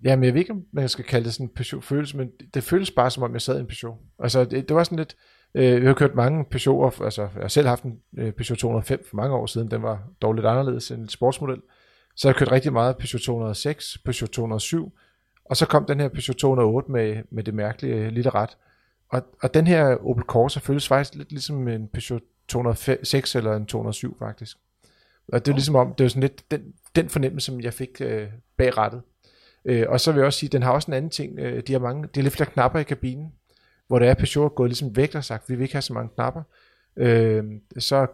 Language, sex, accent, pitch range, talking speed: Danish, male, native, 115-135 Hz, 245 wpm